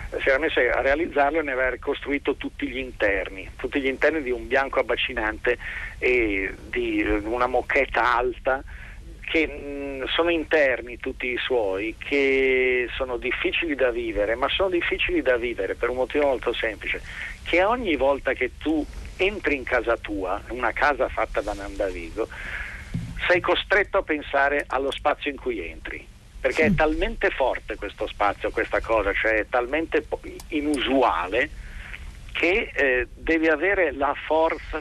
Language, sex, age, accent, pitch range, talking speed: Italian, male, 50-69, native, 125-195 Hz, 150 wpm